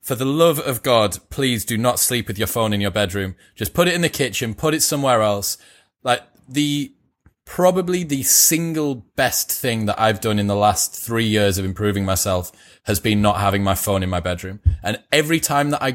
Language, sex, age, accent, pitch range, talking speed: English, male, 20-39, British, 105-140 Hz, 215 wpm